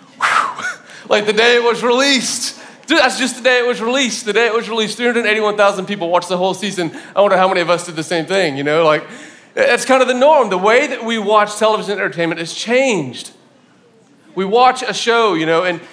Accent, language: American, English